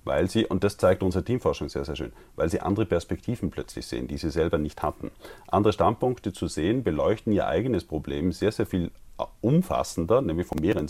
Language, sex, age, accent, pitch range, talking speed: German, male, 40-59, German, 80-100 Hz, 200 wpm